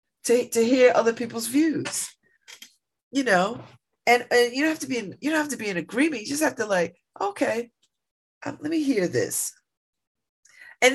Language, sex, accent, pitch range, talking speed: English, female, American, 175-260 Hz, 190 wpm